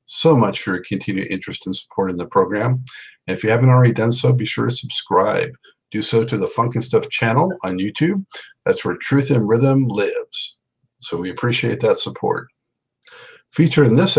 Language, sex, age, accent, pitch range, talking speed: English, male, 50-69, American, 105-145 Hz, 190 wpm